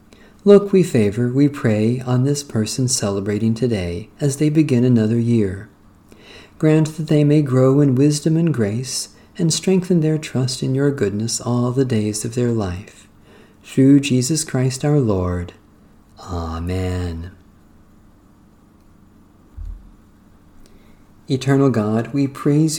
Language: English